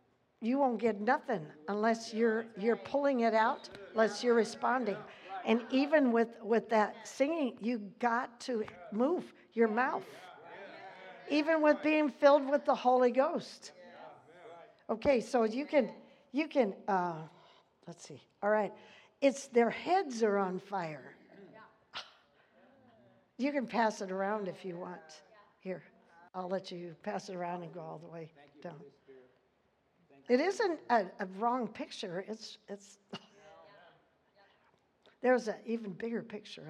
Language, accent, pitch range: English, American, 180-235 Hz